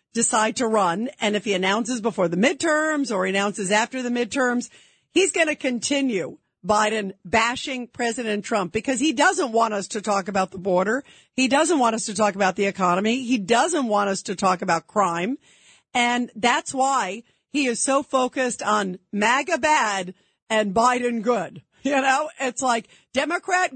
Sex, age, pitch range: female, 50-69, 210-265 Hz